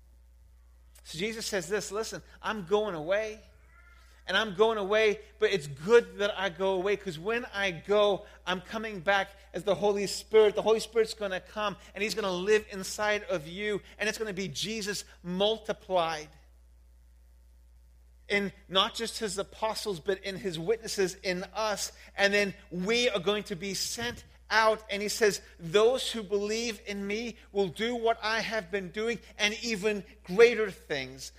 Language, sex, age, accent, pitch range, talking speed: English, male, 40-59, American, 160-220 Hz, 170 wpm